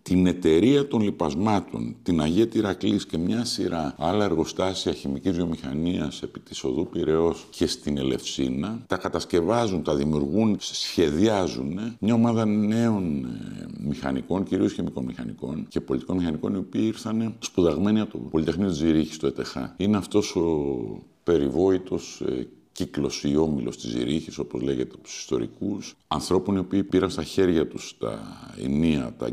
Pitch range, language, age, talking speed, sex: 80-105 Hz, Greek, 50-69, 145 wpm, male